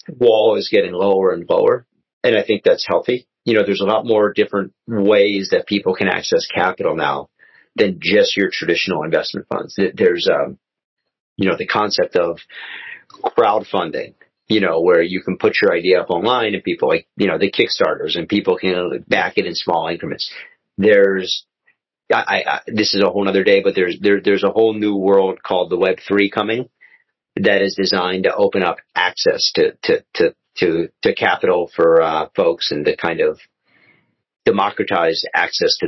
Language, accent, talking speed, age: English, American, 180 wpm, 40-59